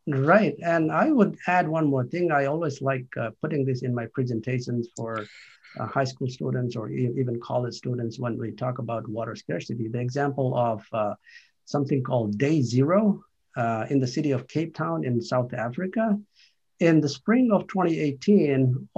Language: English